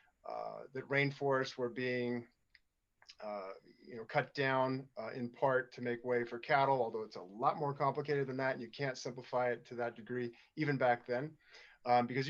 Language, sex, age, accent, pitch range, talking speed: English, male, 30-49, American, 120-135 Hz, 190 wpm